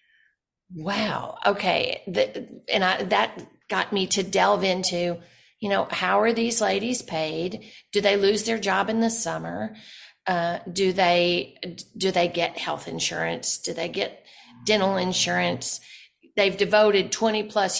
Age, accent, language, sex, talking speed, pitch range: 40-59, American, English, female, 145 wpm, 185-230 Hz